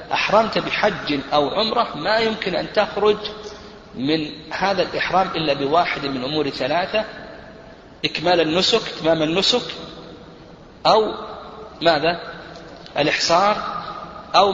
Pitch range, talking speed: 150-185 Hz, 100 wpm